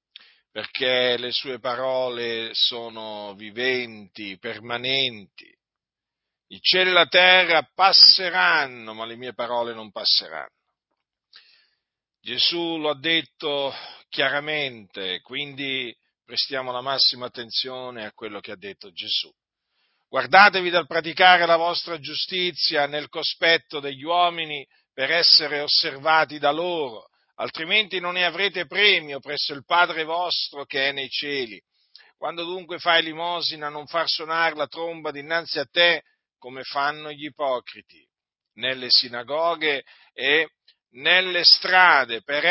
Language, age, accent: Italian, 50-69, native